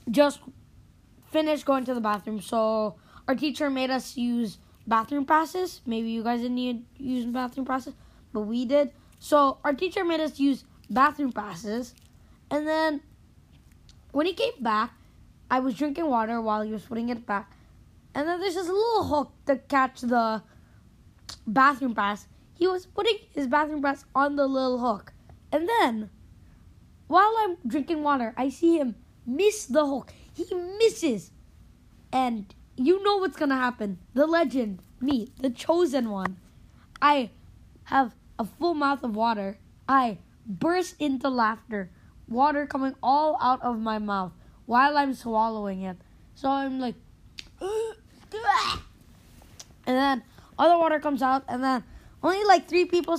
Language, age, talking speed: English, 20-39, 150 wpm